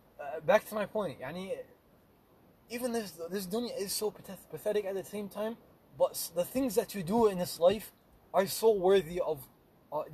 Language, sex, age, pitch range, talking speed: English, male, 20-39, 200-275 Hz, 185 wpm